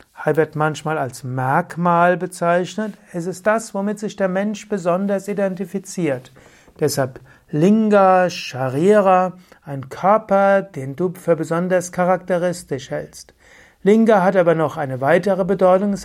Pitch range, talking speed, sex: 150-190 Hz, 125 wpm, male